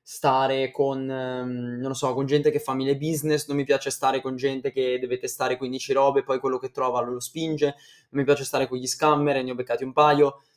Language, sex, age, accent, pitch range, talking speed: Italian, male, 20-39, native, 130-145 Hz, 235 wpm